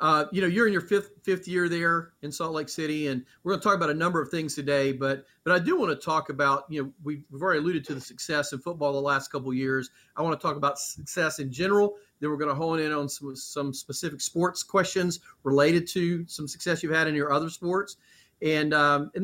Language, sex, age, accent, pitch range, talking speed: English, male, 40-59, American, 140-170 Hz, 255 wpm